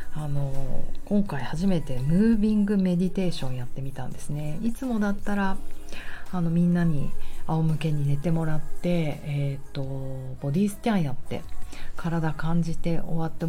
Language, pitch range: Japanese, 140-190 Hz